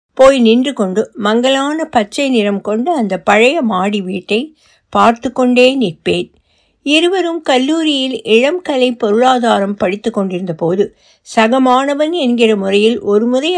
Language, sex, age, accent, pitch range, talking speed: Tamil, female, 60-79, native, 205-265 Hz, 115 wpm